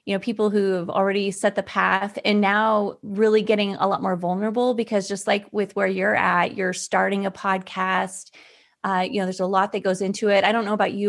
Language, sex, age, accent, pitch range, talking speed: English, female, 30-49, American, 185-220 Hz, 235 wpm